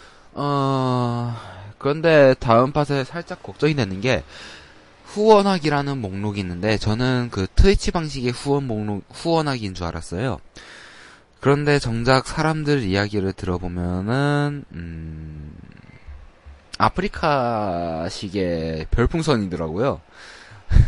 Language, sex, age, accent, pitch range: Korean, male, 20-39, native, 85-135 Hz